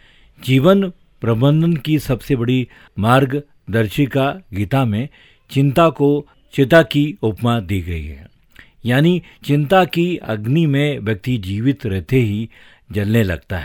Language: Hindi